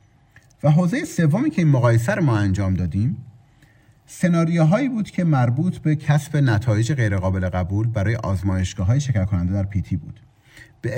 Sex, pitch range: male, 105-135 Hz